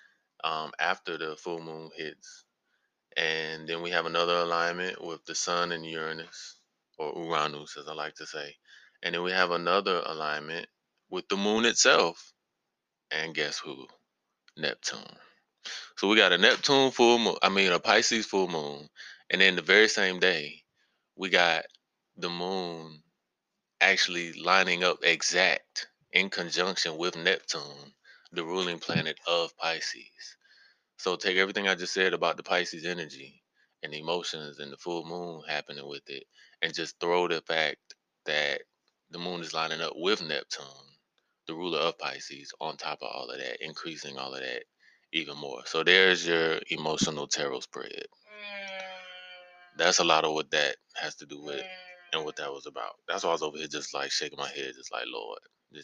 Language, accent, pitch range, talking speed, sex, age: English, American, 80-115 Hz, 170 wpm, male, 20-39